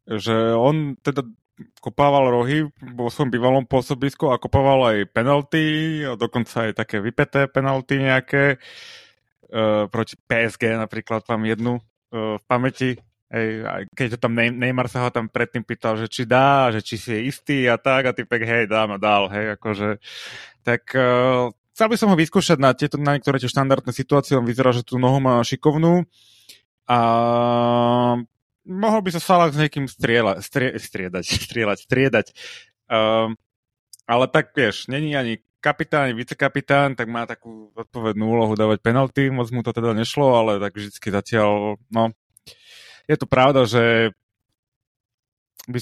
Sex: male